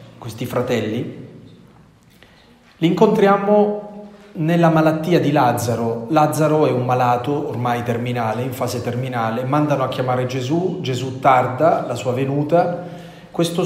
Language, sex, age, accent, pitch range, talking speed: Italian, male, 30-49, native, 120-150 Hz, 120 wpm